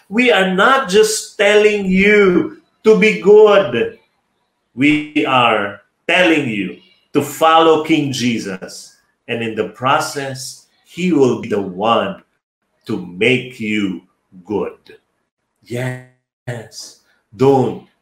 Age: 40-59